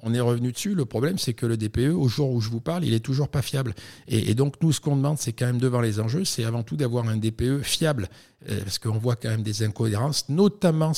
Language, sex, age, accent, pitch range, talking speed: French, male, 50-69, French, 105-130 Hz, 275 wpm